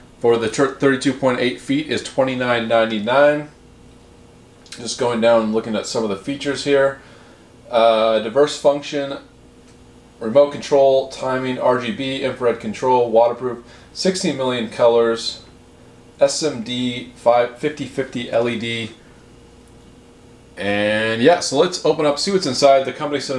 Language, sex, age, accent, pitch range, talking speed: English, male, 30-49, American, 115-135 Hz, 115 wpm